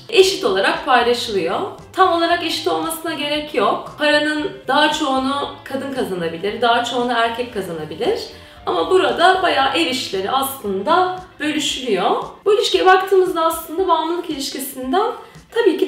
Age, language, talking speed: 30-49, Turkish, 125 wpm